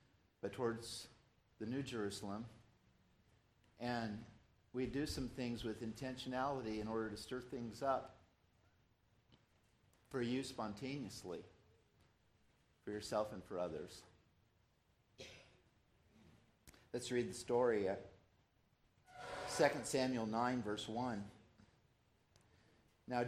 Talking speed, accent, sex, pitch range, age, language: 95 wpm, American, male, 110-135 Hz, 50-69, English